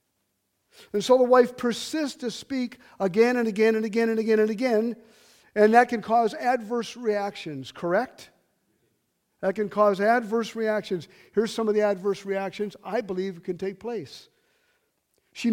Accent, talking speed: American, 155 wpm